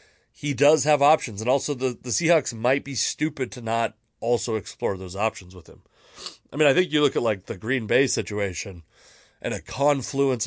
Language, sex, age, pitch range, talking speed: English, male, 30-49, 100-135 Hz, 200 wpm